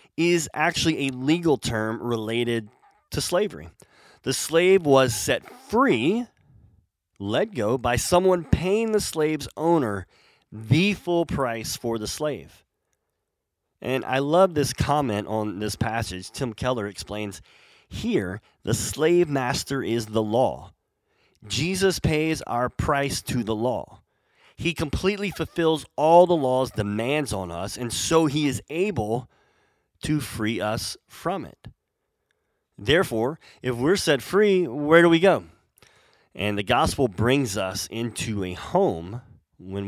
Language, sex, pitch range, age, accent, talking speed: English, male, 105-150 Hz, 30-49, American, 135 wpm